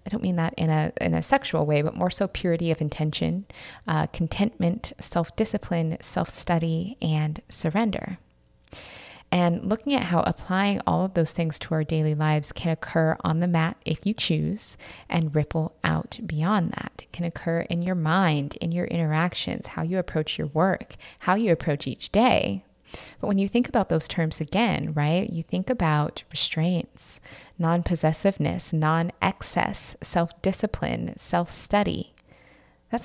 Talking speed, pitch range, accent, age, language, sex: 155 wpm, 160-195 Hz, American, 20-39, English, female